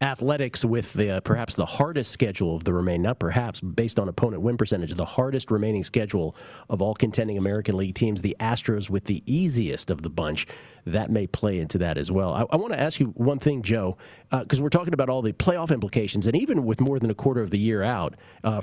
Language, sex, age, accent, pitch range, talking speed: English, male, 40-59, American, 100-135 Hz, 235 wpm